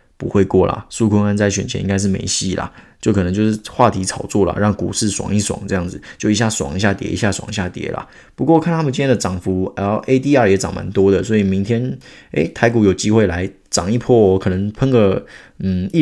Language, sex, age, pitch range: Chinese, male, 20-39, 95-120 Hz